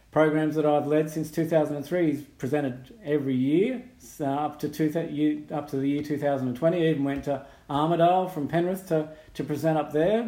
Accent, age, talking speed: Australian, 40-59, 185 wpm